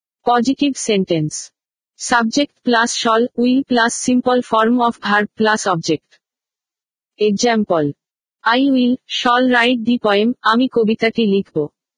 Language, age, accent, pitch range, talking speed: Bengali, 50-69, native, 210-245 Hz, 95 wpm